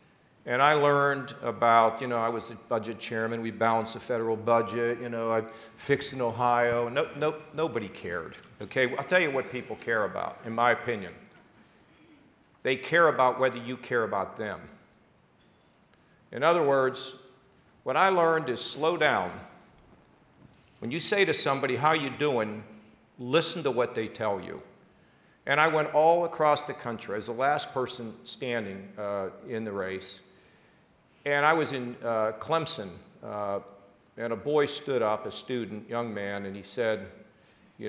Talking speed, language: 170 wpm, English